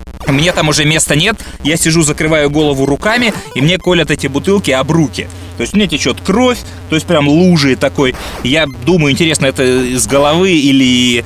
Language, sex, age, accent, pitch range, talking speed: Russian, male, 20-39, native, 135-180 Hz, 180 wpm